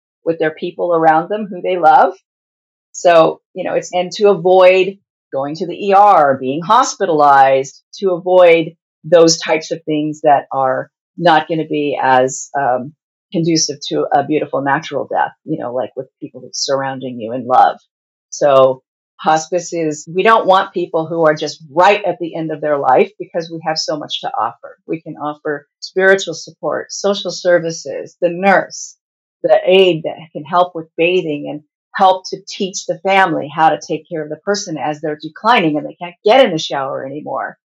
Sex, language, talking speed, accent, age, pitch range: female, English, 180 wpm, American, 50-69, 155-190 Hz